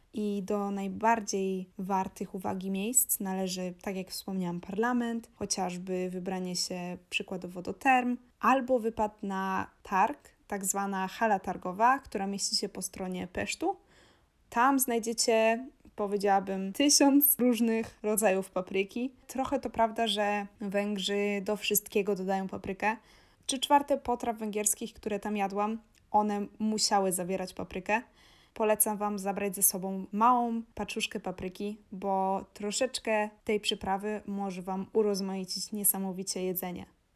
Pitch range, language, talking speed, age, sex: 195-235 Hz, Polish, 120 wpm, 20-39, female